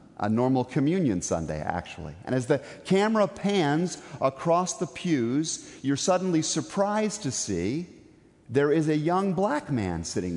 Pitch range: 145-215 Hz